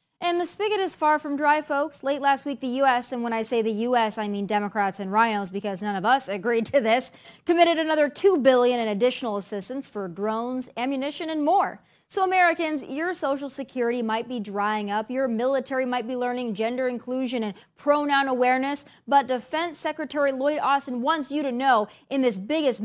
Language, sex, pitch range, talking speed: English, female, 225-300 Hz, 195 wpm